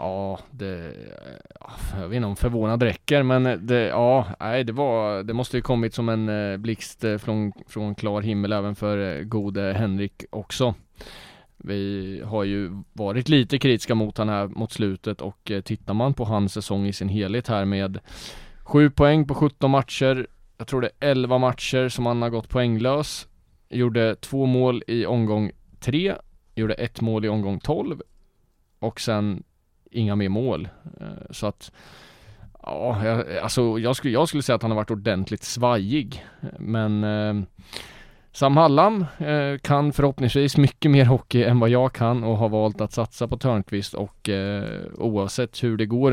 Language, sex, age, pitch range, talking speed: Swedish, male, 20-39, 105-125 Hz, 160 wpm